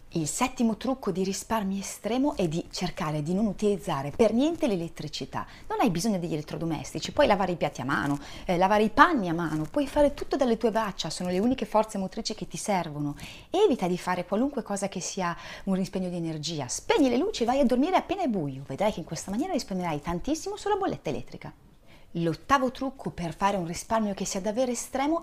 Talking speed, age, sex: 205 wpm, 30-49, female